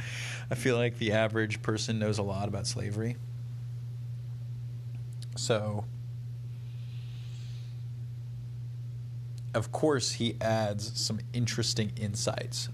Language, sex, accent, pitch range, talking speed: English, male, American, 110-120 Hz, 90 wpm